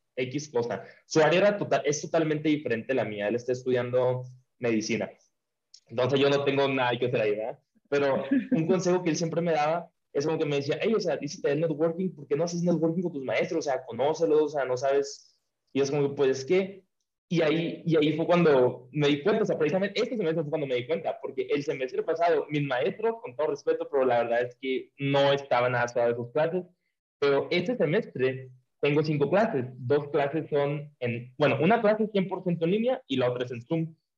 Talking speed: 215 wpm